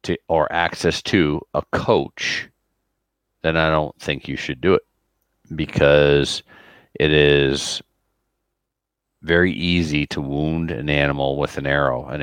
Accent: American